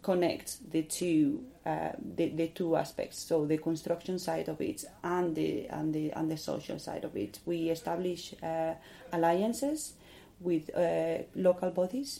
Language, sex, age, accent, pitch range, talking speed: English, female, 30-49, Spanish, 165-185 Hz, 155 wpm